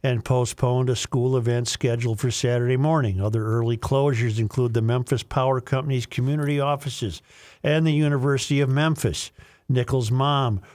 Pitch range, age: 115-135 Hz, 50-69